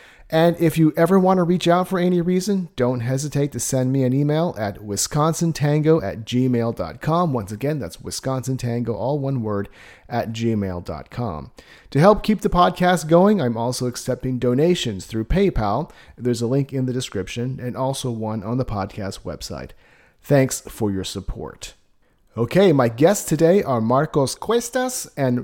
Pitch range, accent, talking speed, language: 120-165 Hz, American, 160 wpm, English